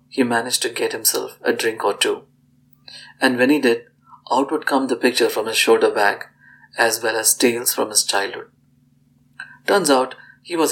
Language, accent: English, Indian